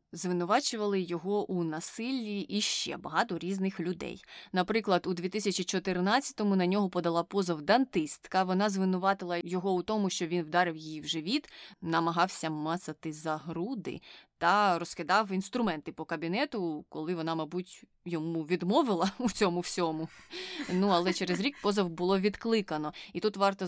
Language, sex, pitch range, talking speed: Ukrainian, female, 165-210 Hz, 140 wpm